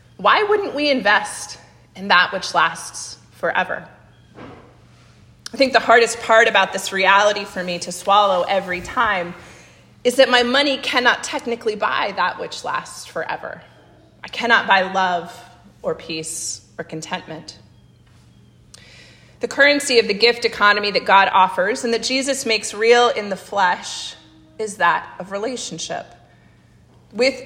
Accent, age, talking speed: American, 30-49, 140 wpm